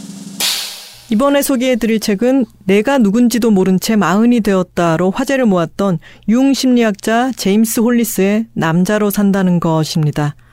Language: Korean